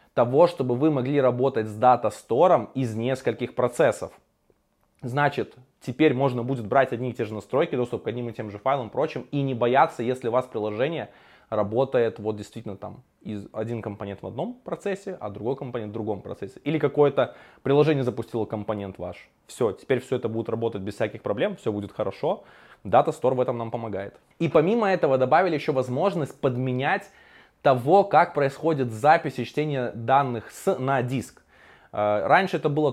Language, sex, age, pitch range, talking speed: Russian, male, 20-39, 115-145 Hz, 175 wpm